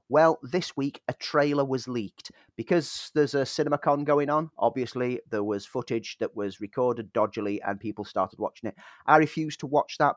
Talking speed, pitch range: 185 wpm, 110-150 Hz